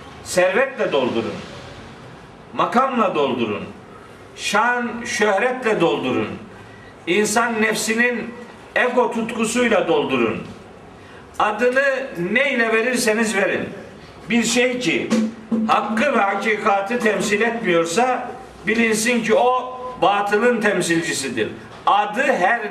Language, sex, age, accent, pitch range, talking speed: Turkish, male, 50-69, native, 210-245 Hz, 80 wpm